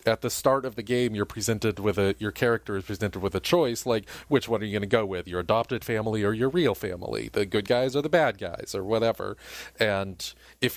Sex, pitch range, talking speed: male, 95-115 Hz, 245 wpm